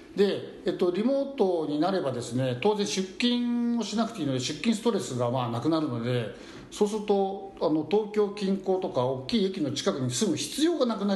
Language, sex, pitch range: Japanese, male, 145-235 Hz